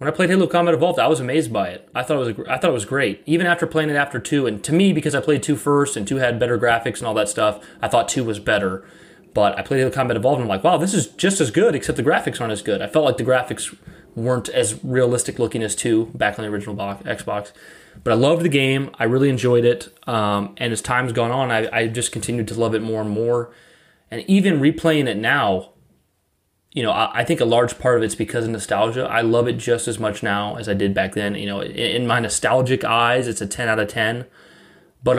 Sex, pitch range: male, 110-140 Hz